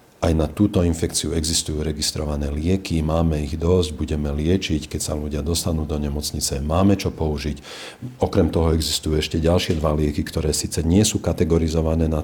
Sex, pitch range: male, 80-100 Hz